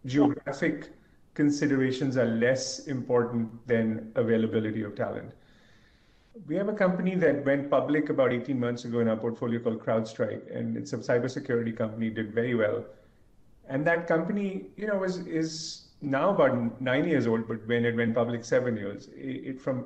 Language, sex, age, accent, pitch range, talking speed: English, male, 40-59, Indian, 115-145 Hz, 165 wpm